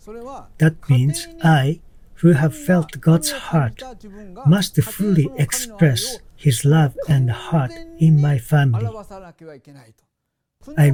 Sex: male